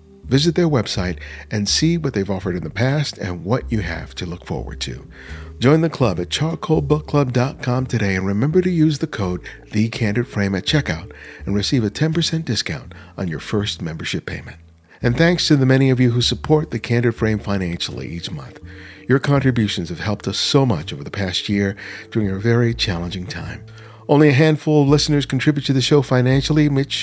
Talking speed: 190 wpm